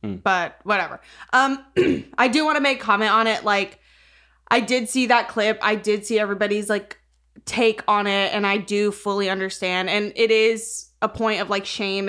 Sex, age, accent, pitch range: female, 20-39, American, 185-220 Hz